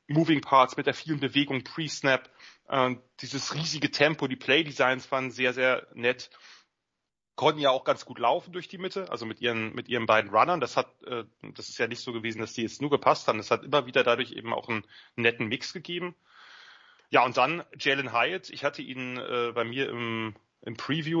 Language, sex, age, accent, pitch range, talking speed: German, male, 30-49, German, 115-150 Hz, 200 wpm